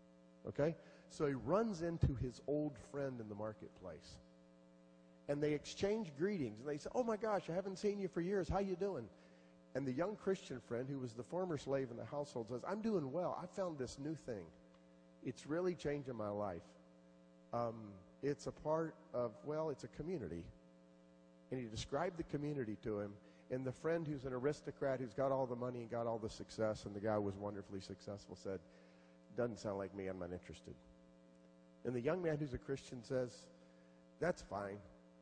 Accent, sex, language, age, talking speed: American, male, English, 40-59, 190 wpm